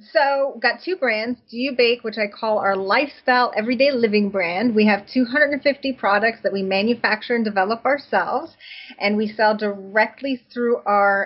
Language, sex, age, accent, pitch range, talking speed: English, female, 30-49, American, 210-250 Hz, 170 wpm